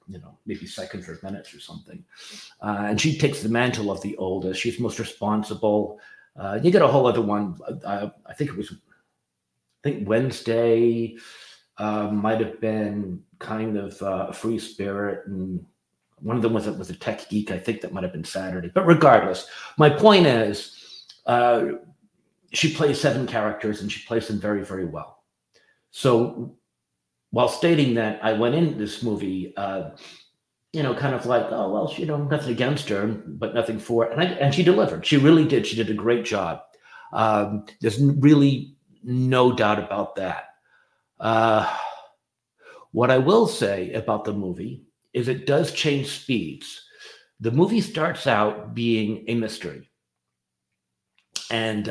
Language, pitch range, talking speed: English, 105-130 Hz, 165 wpm